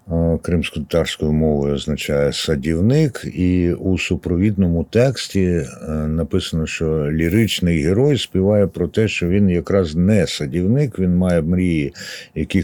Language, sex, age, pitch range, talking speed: Ukrainian, male, 60-79, 80-95 Hz, 120 wpm